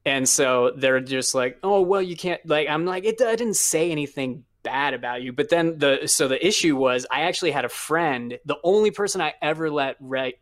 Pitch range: 125-150 Hz